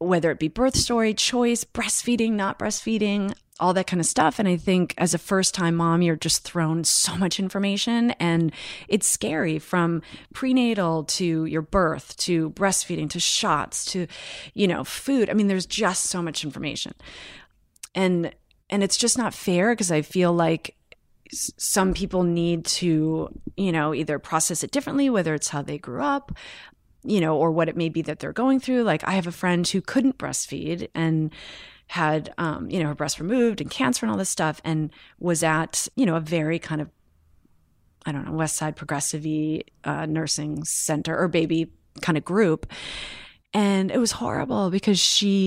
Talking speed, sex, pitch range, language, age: 185 wpm, female, 155-200 Hz, English, 30-49